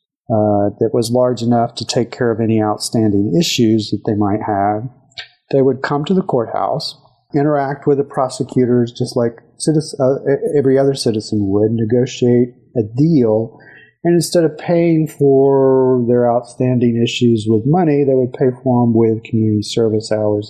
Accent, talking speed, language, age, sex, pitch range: American, 160 wpm, English, 40-59, male, 115-140 Hz